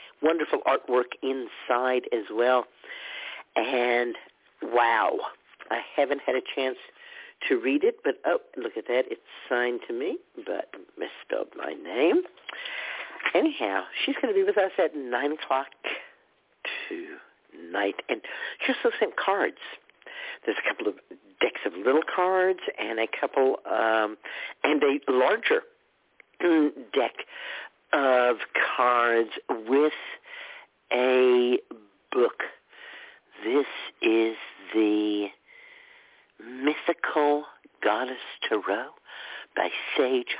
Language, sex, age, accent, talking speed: English, male, 50-69, American, 105 wpm